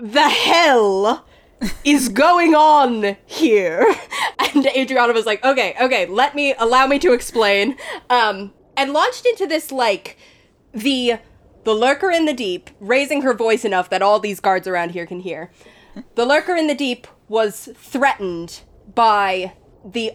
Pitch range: 195-260 Hz